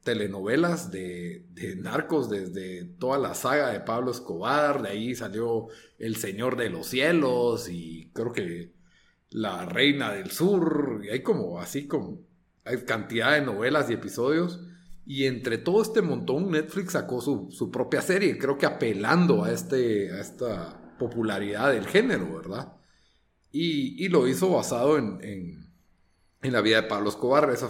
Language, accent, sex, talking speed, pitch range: Spanish, Mexican, male, 160 wpm, 100-155 Hz